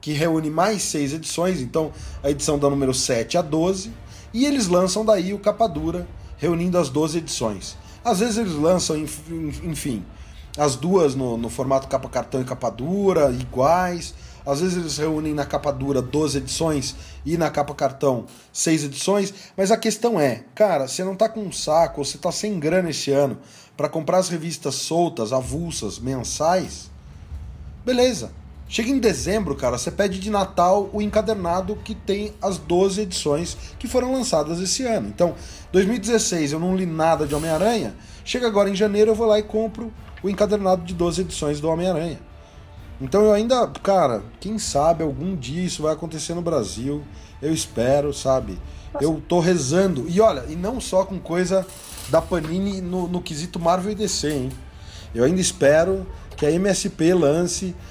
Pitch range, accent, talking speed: 140-190 Hz, Brazilian, 175 wpm